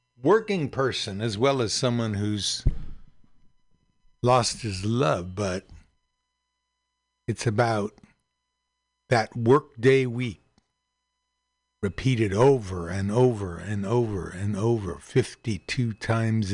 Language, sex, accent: English, male, American